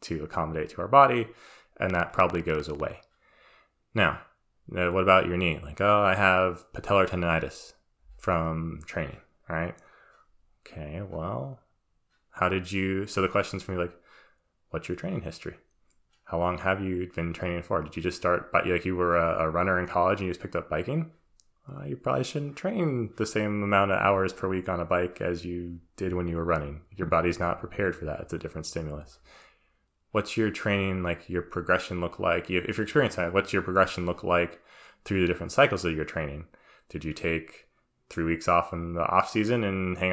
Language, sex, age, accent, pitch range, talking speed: English, male, 20-39, American, 85-100 Hz, 195 wpm